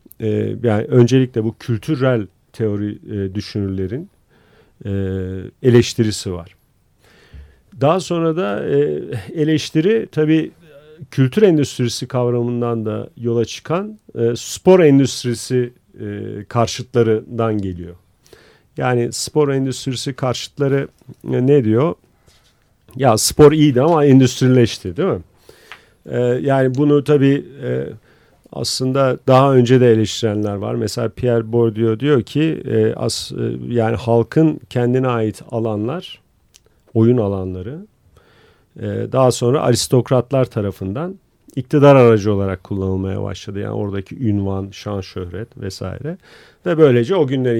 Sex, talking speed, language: male, 110 wpm, Turkish